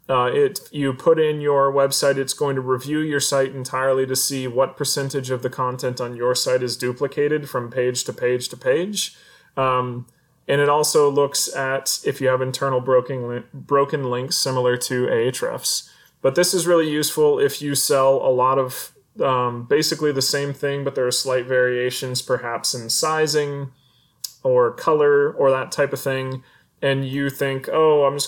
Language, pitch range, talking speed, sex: English, 125-140 Hz, 185 wpm, male